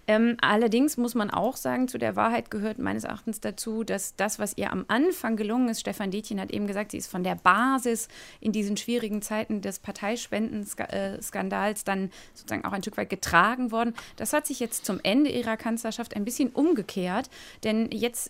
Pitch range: 205-240 Hz